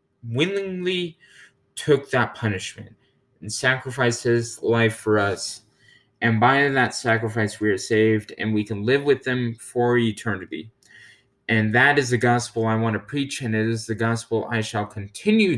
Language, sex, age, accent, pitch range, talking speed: English, male, 20-39, American, 105-125 Hz, 160 wpm